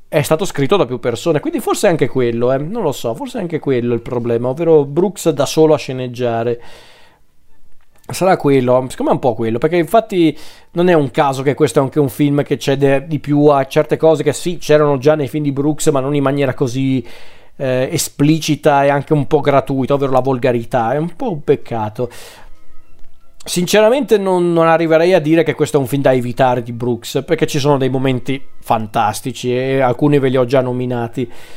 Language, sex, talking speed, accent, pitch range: Italian, male, 210 wpm, native, 125-150 Hz